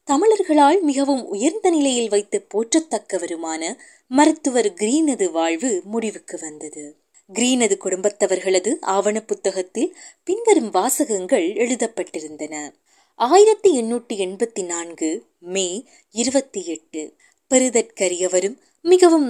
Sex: female